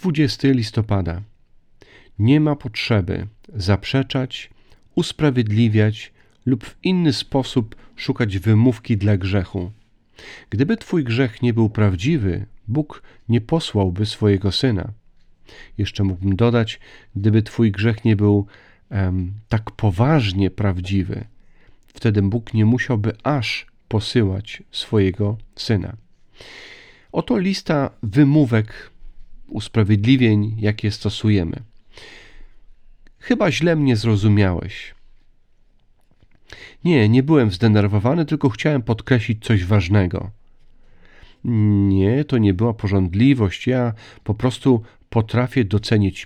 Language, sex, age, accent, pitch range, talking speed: Polish, male, 40-59, native, 100-125 Hz, 95 wpm